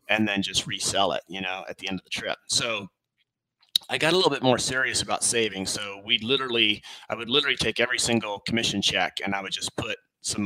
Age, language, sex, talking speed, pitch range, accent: 30-49, English, male, 230 wpm, 95-115 Hz, American